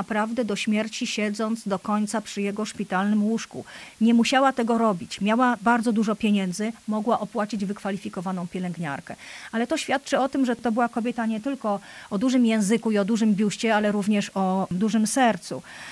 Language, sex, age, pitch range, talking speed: Polish, female, 40-59, 205-260 Hz, 170 wpm